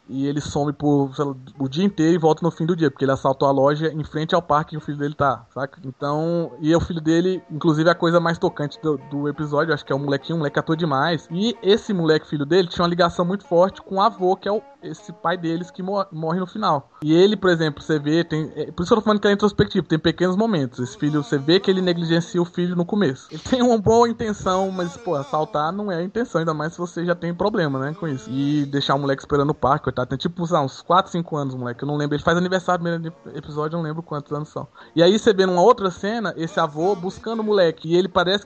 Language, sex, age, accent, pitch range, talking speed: Portuguese, male, 20-39, Brazilian, 145-180 Hz, 275 wpm